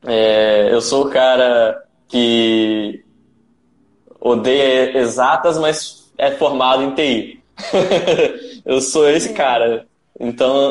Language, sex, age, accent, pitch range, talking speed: Portuguese, male, 10-29, Brazilian, 110-135 Hz, 100 wpm